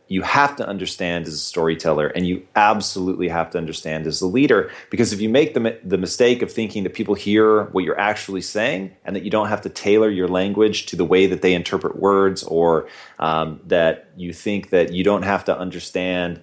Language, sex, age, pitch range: English, male, 30-49, 90-110 Hz